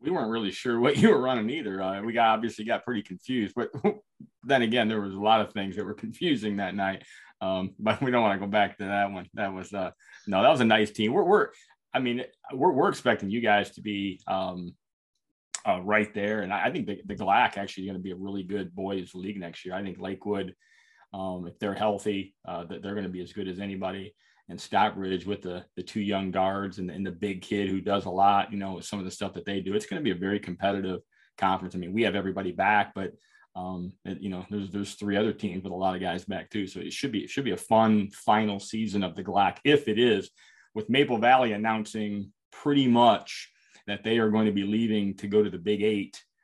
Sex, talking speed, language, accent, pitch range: male, 255 wpm, English, American, 95-105 Hz